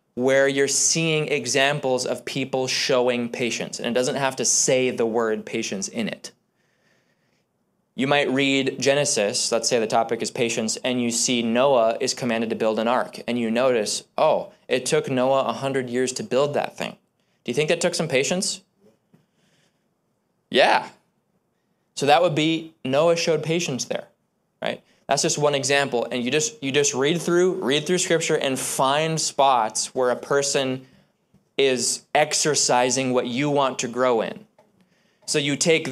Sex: male